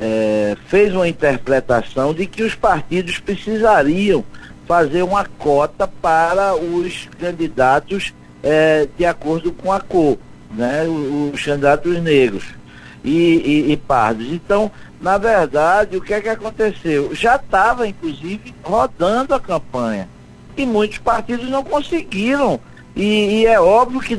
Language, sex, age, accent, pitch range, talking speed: Portuguese, male, 60-79, Brazilian, 150-225 Hz, 135 wpm